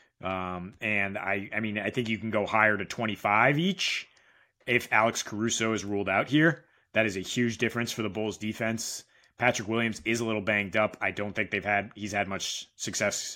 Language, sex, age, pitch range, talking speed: English, male, 30-49, 105-125 Hz, 210 wpm